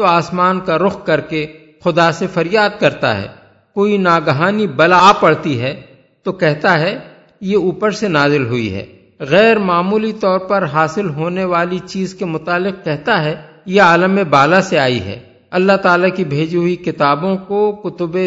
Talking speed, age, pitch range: 170 wpm, 50-69, 155-195 Hz